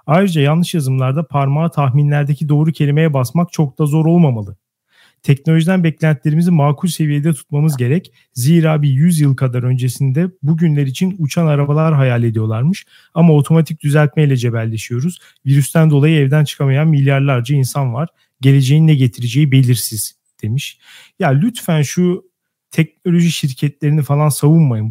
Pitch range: 140-170 Hz